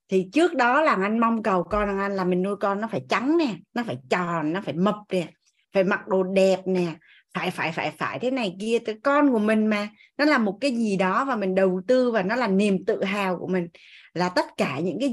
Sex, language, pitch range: female, Vietnamese, 180-220 Hz